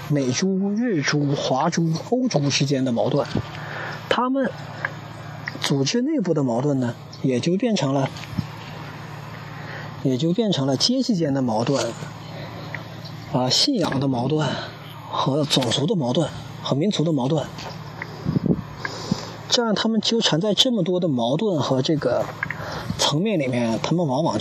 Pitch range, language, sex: 135-175 Hz, Chinese, male